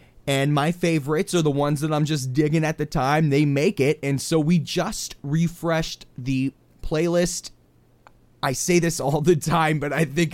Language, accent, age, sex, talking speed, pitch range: English, American, 30-49, male, 185 wpm, 130-165 Hz